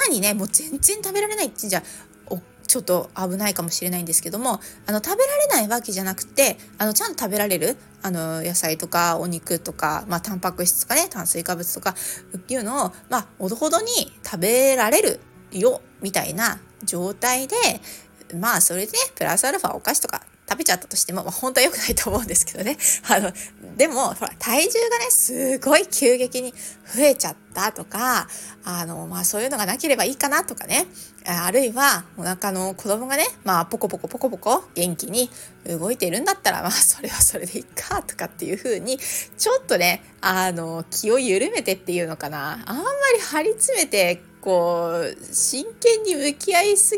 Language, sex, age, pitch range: Japanese, female, 20-39, 180-290 Hz